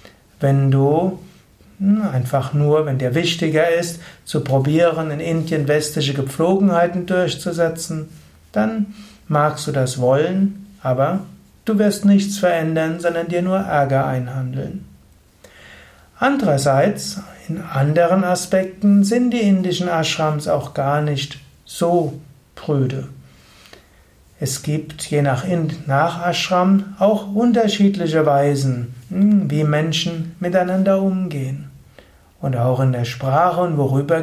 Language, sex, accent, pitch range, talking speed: German, male, German, 145-185 Hz, 110 wpm